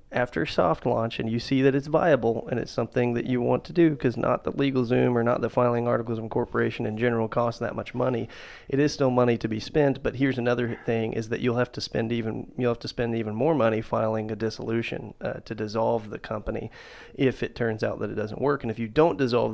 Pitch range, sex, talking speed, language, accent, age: 110-120 Hz, male, 250 wpm, English, American, 30-49